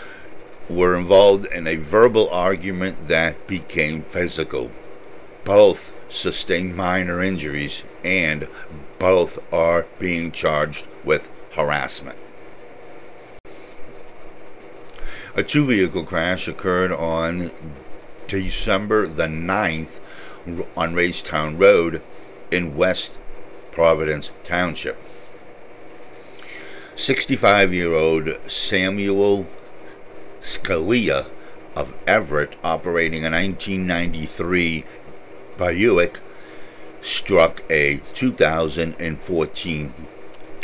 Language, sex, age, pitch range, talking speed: English, male, 60-79, 80-95 Hz, 70 wpm